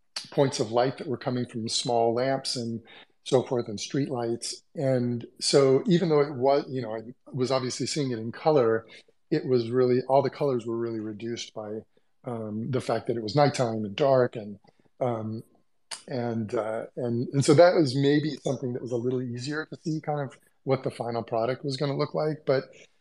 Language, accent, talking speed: English, American, 205 wpm